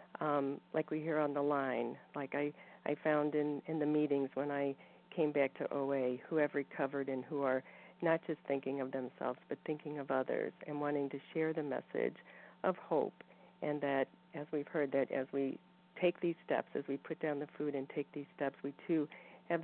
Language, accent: English, American